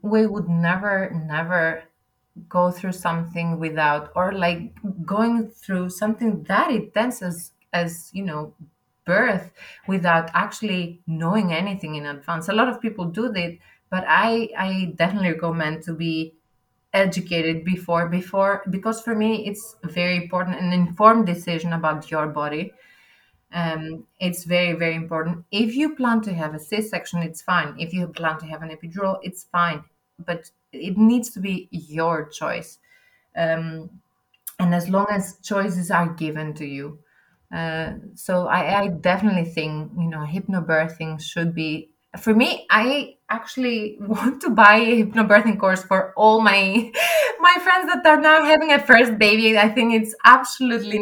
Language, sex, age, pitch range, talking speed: English, female, 30-49, 165-215 Hz, 155 wpm